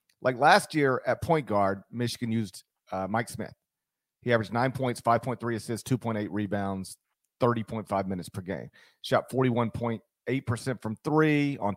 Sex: male